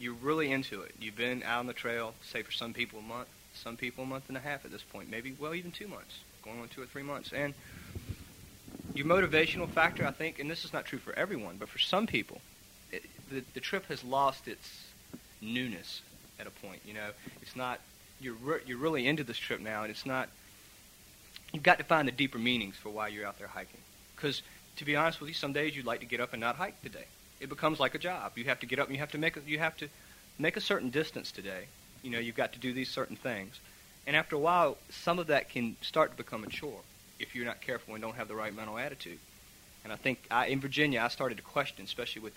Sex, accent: male, American